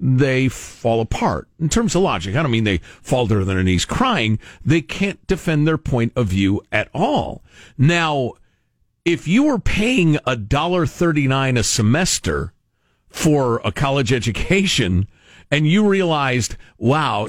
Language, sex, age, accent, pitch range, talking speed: English, male, 50-69, American, 115-195 Hz, 150 wpm